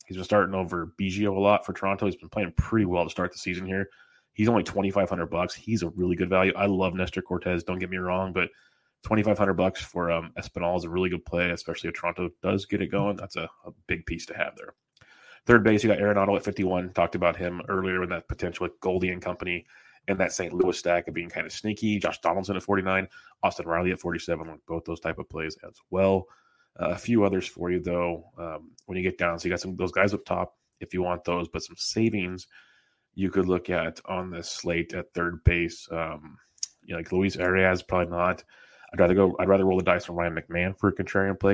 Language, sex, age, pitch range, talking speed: English, male, 30-49, 85-95 Hz, 235 wpm